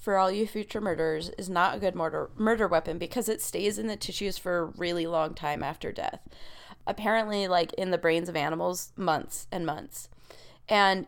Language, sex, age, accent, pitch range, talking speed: English, female, 30-49, American, 165-215 Hz, 195 wpm